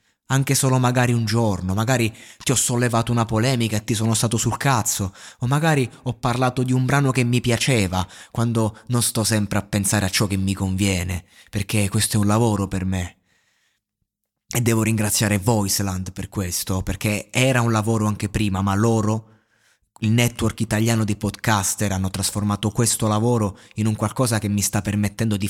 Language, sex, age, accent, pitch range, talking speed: Italian, male, 20-39, native, 100-120 Hz, 180 wpm